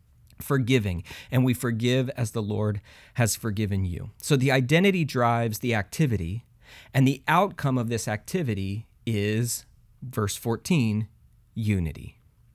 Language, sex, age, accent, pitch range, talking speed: English, male, 30-49, American, 105-135 Hz, 125 wpm